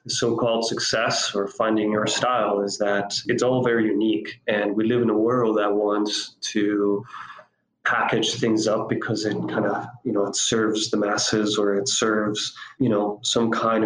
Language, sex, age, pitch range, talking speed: English, male, 20-39, 105-120 Hz, 180 wpm